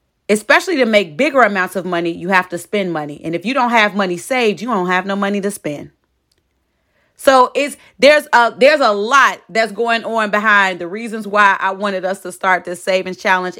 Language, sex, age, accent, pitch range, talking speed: English, female, 30-49, American, 185-225 Hz, 210 wpm